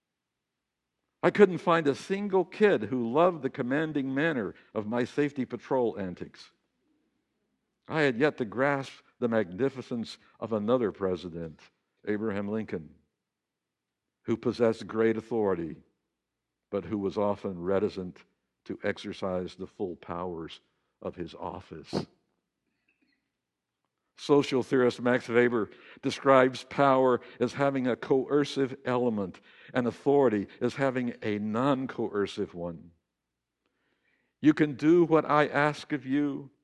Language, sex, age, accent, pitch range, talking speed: English, male, 60-79, American, 100-145 Hz, 115 wpm